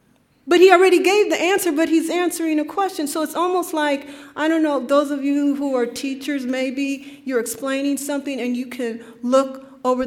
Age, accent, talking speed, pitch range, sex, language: 40-59, American, 195 wpm, 235-285 Hz, female, English